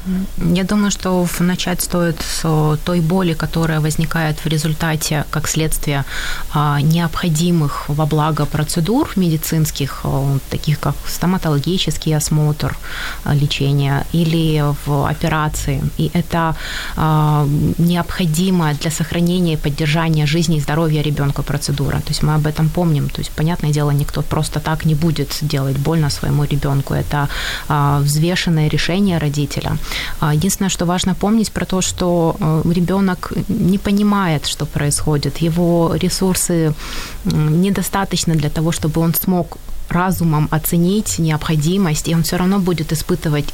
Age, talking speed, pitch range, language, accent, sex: 20-39, 125 wpm, 150-175 Hz, Ukrainian, native, female